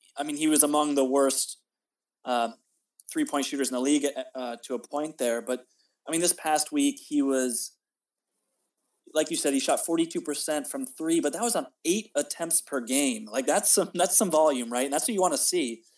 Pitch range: 130-165 Hz